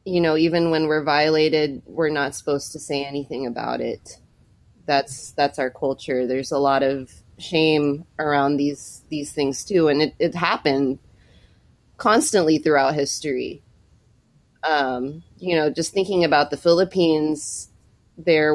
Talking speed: 140 wpm